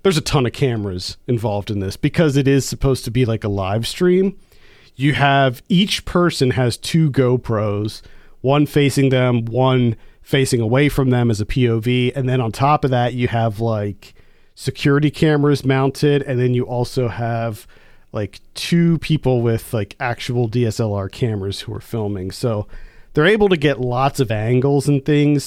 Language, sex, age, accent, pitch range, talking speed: English, male, 40-59, American, 115-145 Hz, 175 wpm